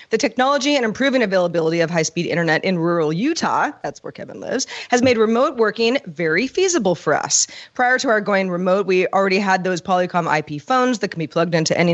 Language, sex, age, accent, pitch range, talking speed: English, female, 30-49, American, 170-225 Hz, 205 wpm